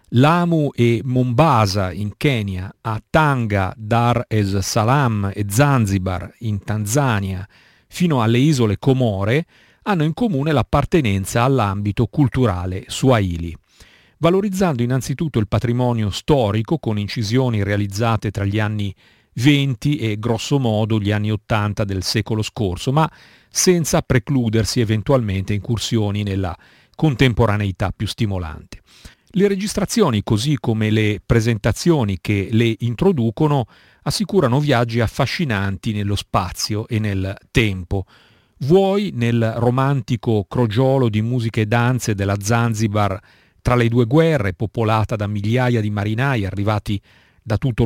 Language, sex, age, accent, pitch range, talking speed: Italian, male, 50-69, native, 105-130 Hz, 115 wpm